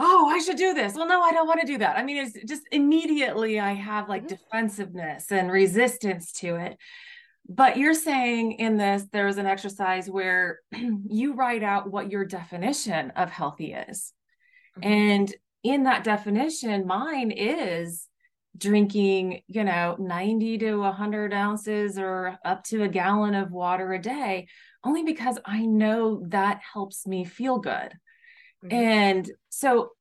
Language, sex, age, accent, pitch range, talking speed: English, female, 20-39, American, 195-255 Hz, 155 wpm